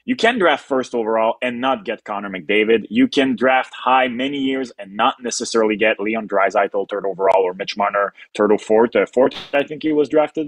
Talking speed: 205 wpm